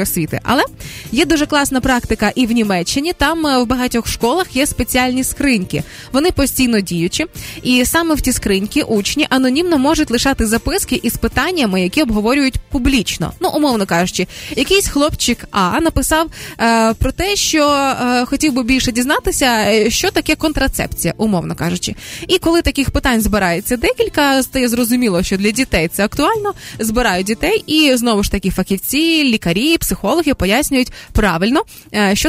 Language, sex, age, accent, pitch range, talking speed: Ukrainian, female, 20-39, native, 205-285 Hz, 145 wpm